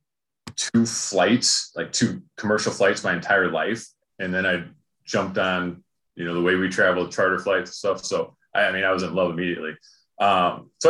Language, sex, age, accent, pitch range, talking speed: English, male, 30-49, American, 90-105 Hz, 185 wpm